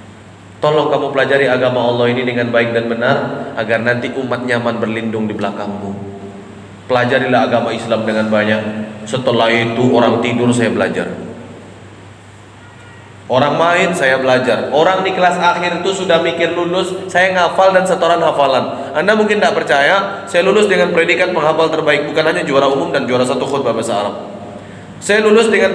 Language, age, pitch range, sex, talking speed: Indonesian, 20-39, 115-165 Hz, male, 160 wpm